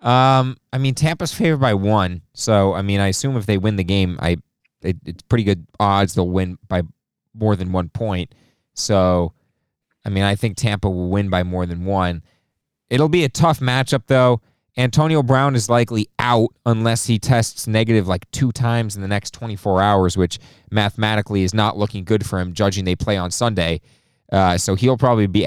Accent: American